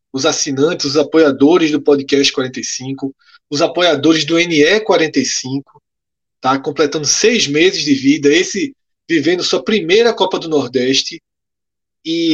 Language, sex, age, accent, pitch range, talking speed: Portuguese, male, 20-39, Brazilian, 135-185 Hz, 115 wpm